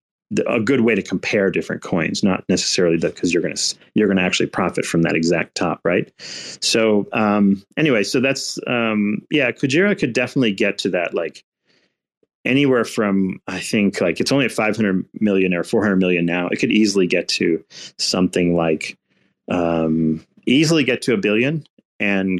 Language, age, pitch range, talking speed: English, 30-49, 90-115 Hz, 175 wpm